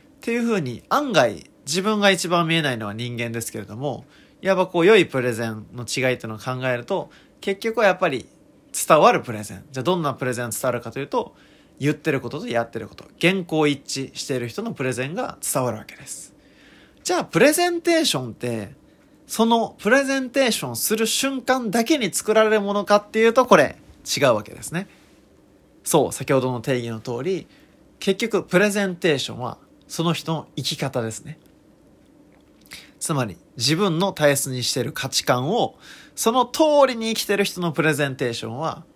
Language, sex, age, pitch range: Japanese, male, 20-39, 120-200 Hz